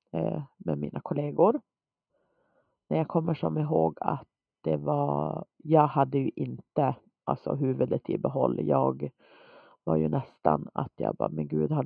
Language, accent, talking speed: Swedish, native, 145 wpm